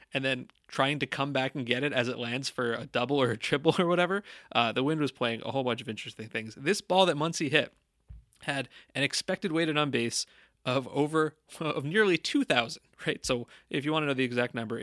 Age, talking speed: 30-49, 225 wpm